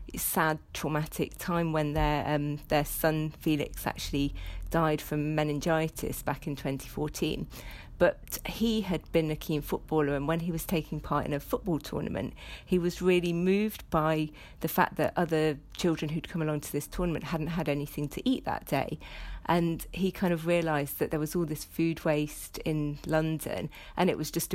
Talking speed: 180 wpm